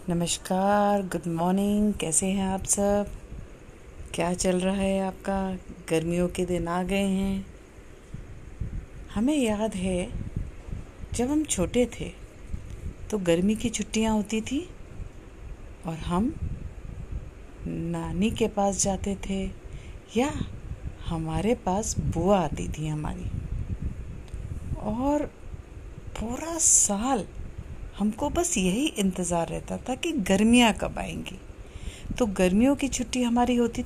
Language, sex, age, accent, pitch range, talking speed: Hindi, female, 50-69, native, 175-230 Hz, 115 wpm